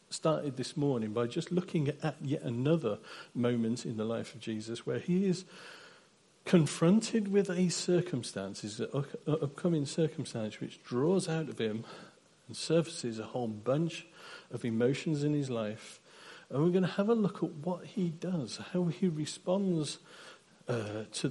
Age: 50-69